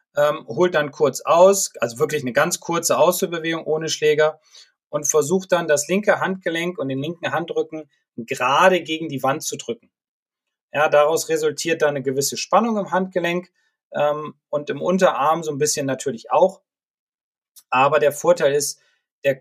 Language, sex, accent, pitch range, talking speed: German, male, German, 135-165 Hz, 160 wpm